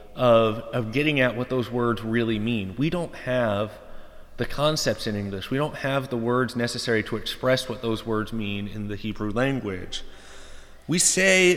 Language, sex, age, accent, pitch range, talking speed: English, male, 30-49, American, 100-135 Hz, 175 wpm